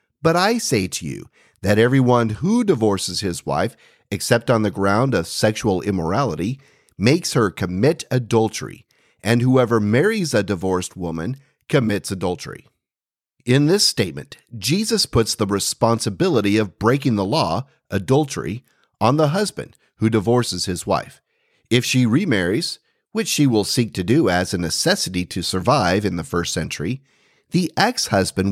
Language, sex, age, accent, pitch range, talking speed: English, male, 40-59, American, 105-145 Hz, 145 wpm